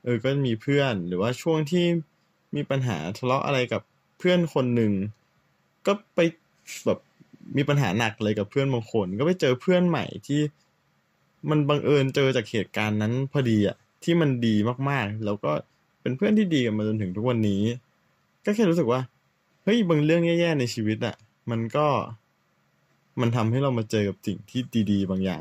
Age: 20-39